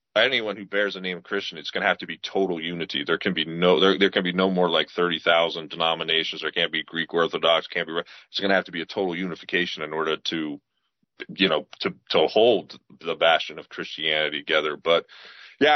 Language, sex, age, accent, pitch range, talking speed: English, male, 30-49, American, 90-105 Hz, 230 wpm